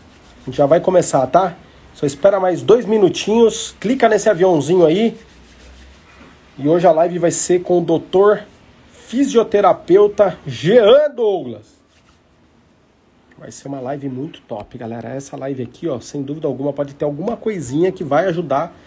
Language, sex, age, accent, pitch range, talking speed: Portuguese, male, 40-59, Brazilian, 130-170 Hz, 145 wpm